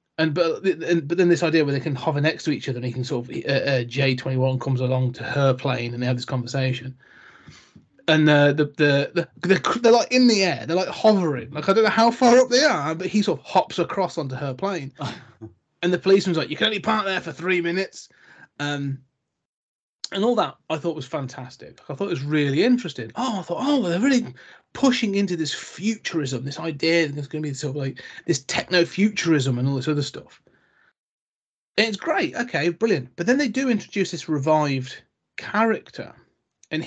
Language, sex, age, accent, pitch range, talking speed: English, male, 30-49, British, 130-180 Hz, 215 wpm